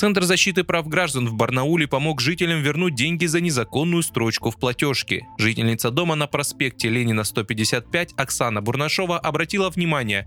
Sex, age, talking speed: male, 20-39, 145 wpm